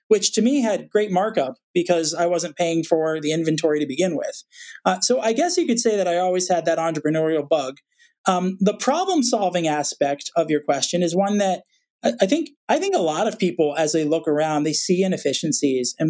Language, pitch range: English, 165-220 Hz